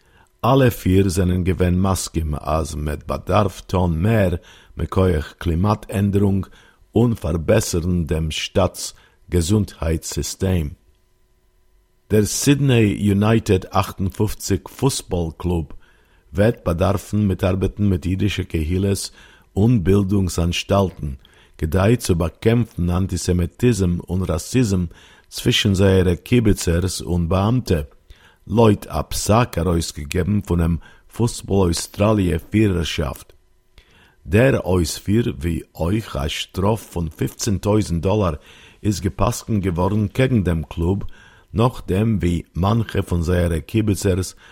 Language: Hebrew